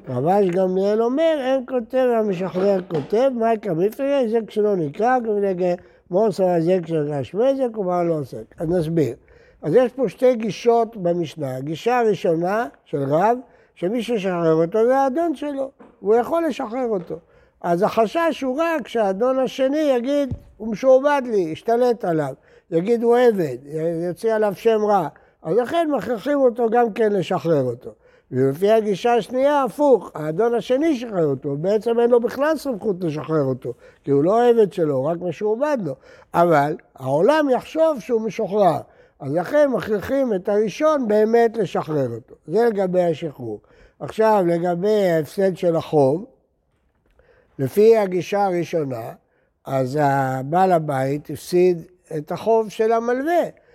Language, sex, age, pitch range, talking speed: Hebrew, male, 60-79, 170-245 Hz, 140 wpm